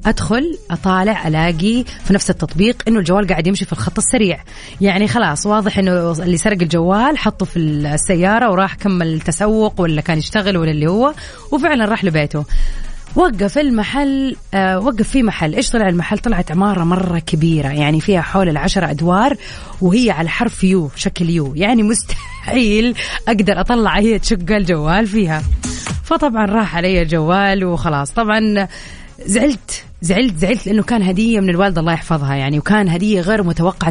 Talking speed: 155 wpm